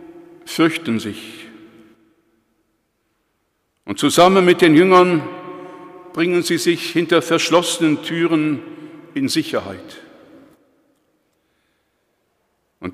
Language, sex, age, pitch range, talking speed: German, male, 60-79, 140-195 Hz, 75 wpm